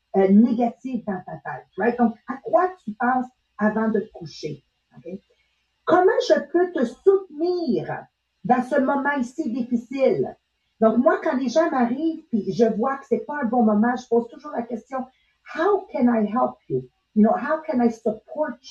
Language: English